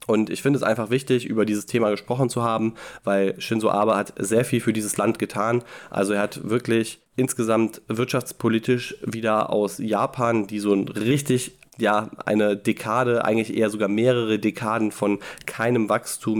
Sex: male